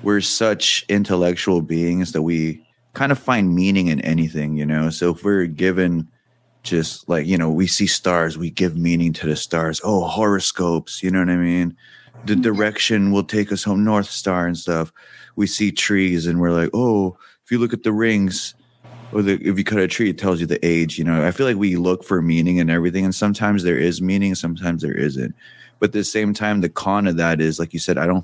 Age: 20-39